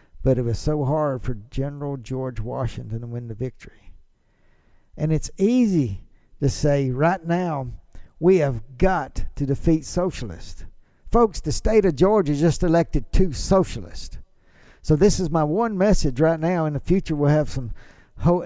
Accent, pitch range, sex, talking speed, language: American, 130-190 Hz, male, 165 wpm, English